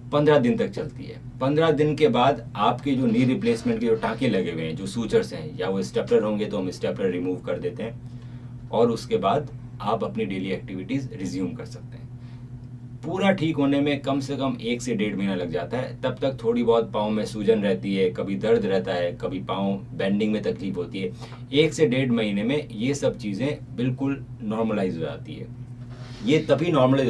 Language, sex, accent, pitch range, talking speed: Hindi, male, native, 115-140 Hz, 210 wpm